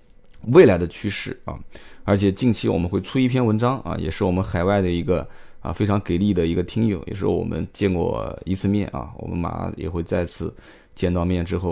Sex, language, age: male, Chinese, 20-39